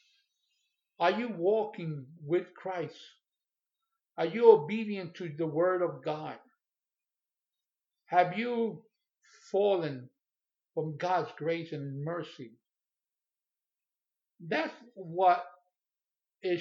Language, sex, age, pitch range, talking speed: English, male, 50-69, 160-215 Hz, 85 wpm